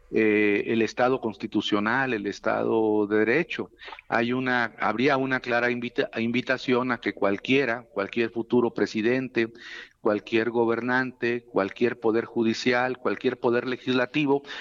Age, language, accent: 50-69, Spanish, Mexican